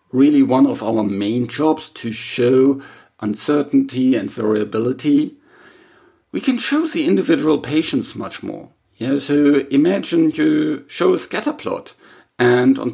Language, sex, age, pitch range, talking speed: English, male, 50-69, 110-155 Hz, 135 wpm